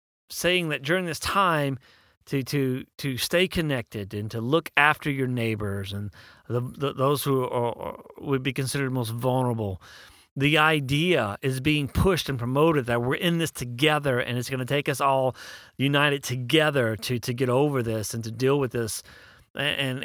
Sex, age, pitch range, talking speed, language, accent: male, 40-59, 120-160 Hz, 180 wpm, English, American